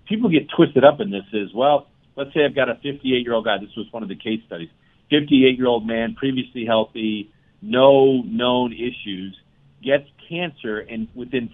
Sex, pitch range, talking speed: male, 110-145 Hz, 190 wpm